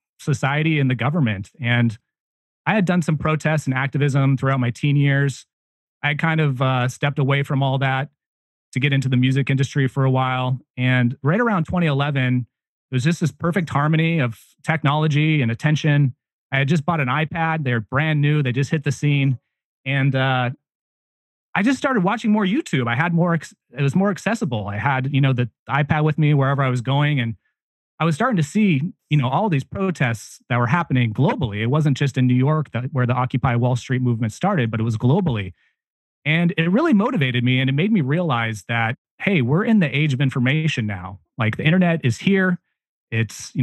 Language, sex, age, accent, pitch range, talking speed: English, male, 30-49, American, 125-155 Hz, 205 wpm